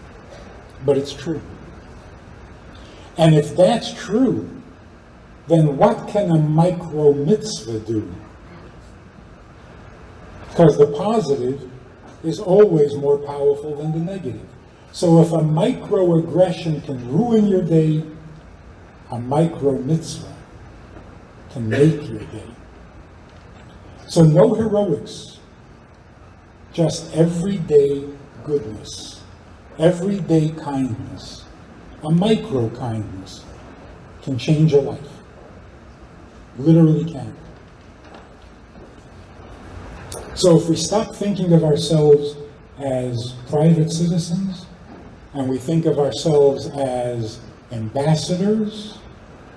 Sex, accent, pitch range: male, American, 115-165 Hz